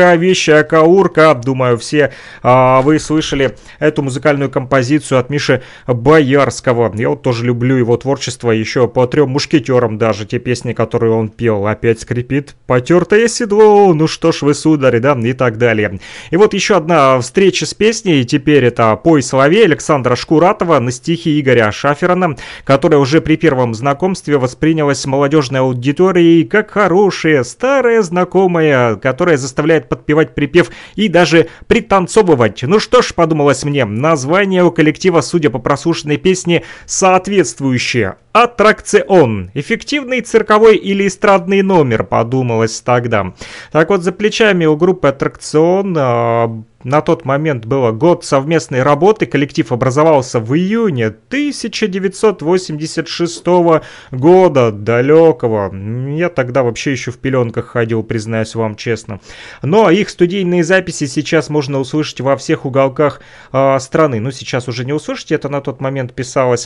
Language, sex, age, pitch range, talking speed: Russian, male, 30-49, 125-175 Hz, 140 wpm